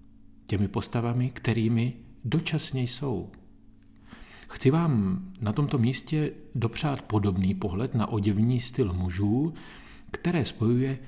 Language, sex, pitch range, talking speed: Czech, male, 95-125 Hz, 105 wpm